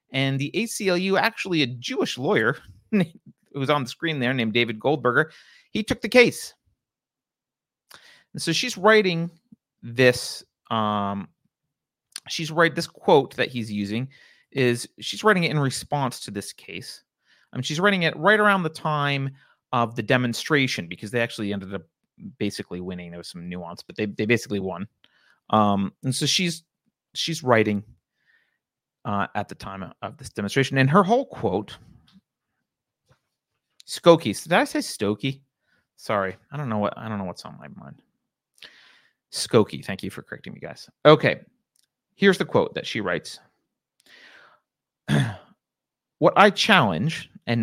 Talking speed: 155 wpm